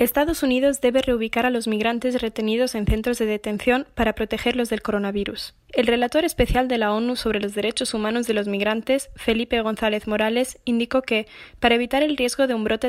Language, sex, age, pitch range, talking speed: Spanish, female, 10-29, 220-255 Hz, 190 wpm